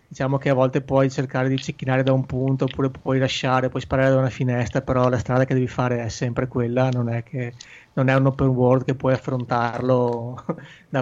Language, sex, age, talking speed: Italian, male, 30-49, 220 wpm